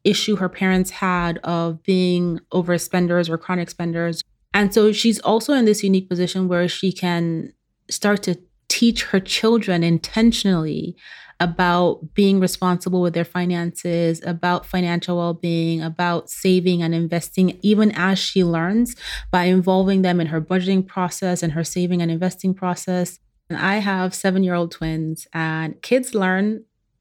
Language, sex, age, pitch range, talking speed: English, female, 30-49, 175-200 Hz, 145 wpm